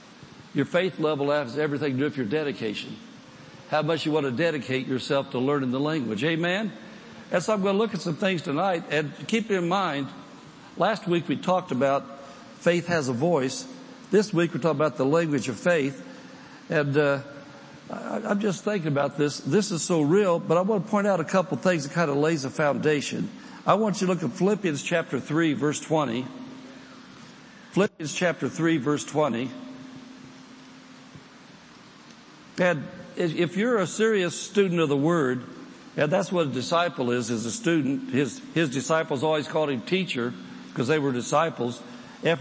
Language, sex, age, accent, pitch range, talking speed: English, male, 60-79, American, 145-195 Hz, 180 wpm